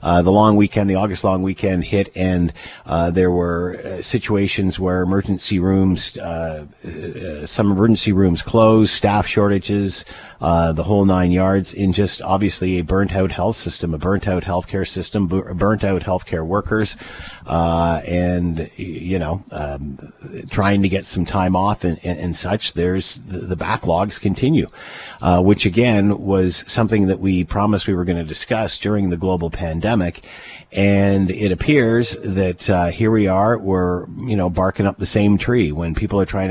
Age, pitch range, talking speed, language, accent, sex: 50-69, 85-100 Hz, 175 wpm, English, American, male